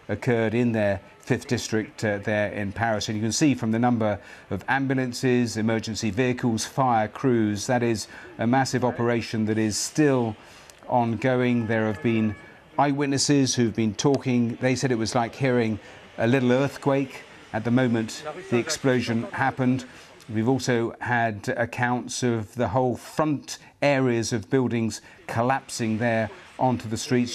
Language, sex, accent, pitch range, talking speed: English, male, British, 110-125 Hz, 150 wpm